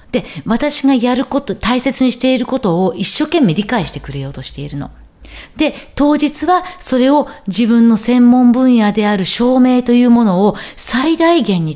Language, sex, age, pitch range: Japanese, female, 40-59, 185-270 Hz